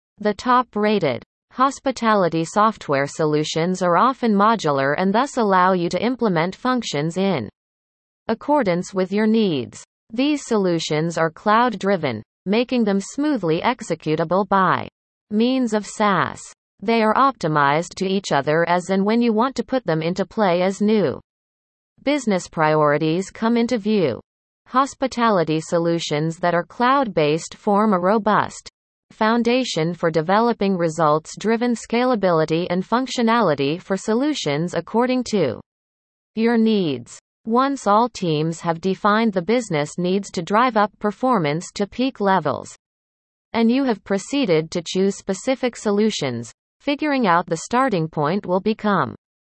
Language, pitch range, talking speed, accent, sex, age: English, 165-230 Hz, 135 wpm, American, female, 30-49